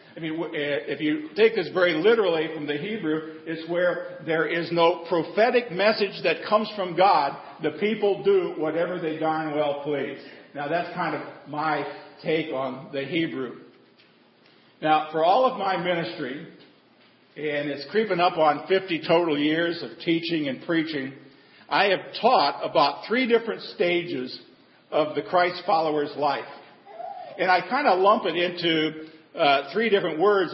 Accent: American